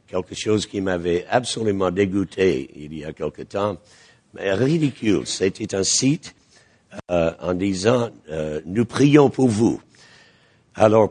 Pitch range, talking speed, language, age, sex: 95-120 Hz, 130 wpm, English, 60-79, male